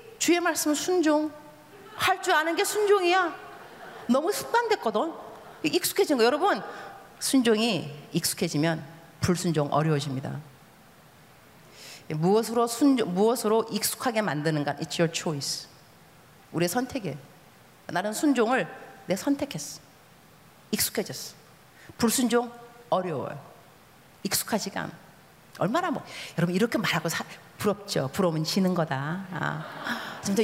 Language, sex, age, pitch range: Korean, female, 40-59, 175-280 Hz